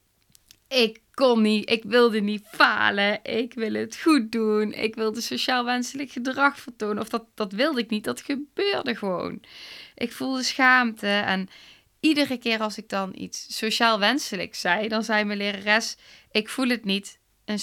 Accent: Dutch